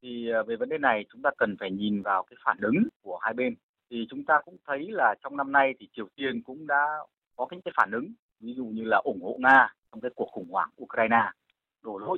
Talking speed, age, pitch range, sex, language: 255 wpm, 20-39, 115-180 Hz, male, Vietnamese